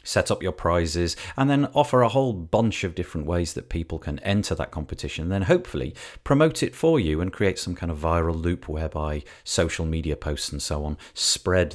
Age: 40-59